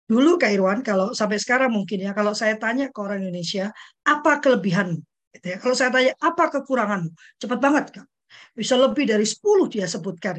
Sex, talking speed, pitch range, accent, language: female, 185 wpm, 210-315 Hz, native, Indonesian